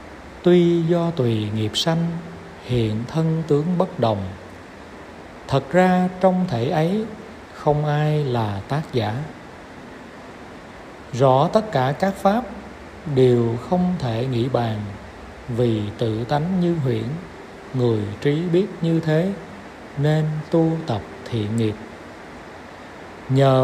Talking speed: 115 wpm